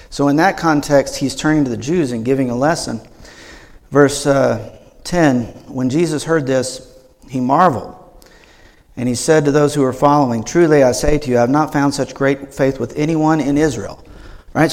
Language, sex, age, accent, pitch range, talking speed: English, male, 50-69, American, 130-155 Hz, 185 wpm